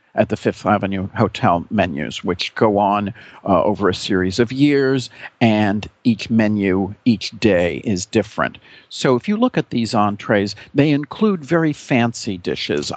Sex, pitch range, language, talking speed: male, 100-120 Hz, English, 155 wpm